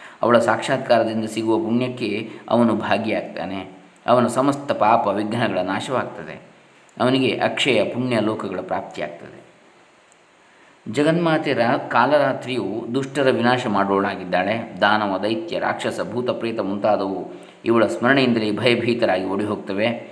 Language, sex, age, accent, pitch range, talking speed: Kannada, male, 20-39, native, 110-125 Hz, 90 wpm